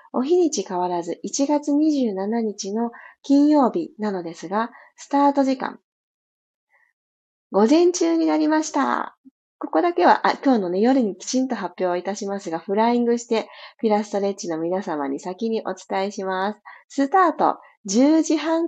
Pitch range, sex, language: 185-240 Hz, female, Japanese